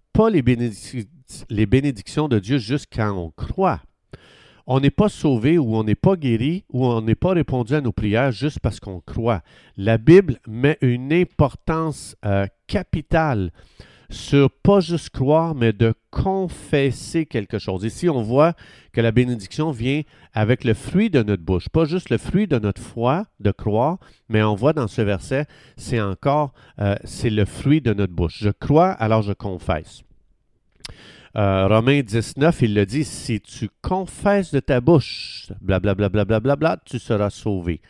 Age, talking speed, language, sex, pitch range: 50-69, 180 wpm, French, male, 105-150 Hz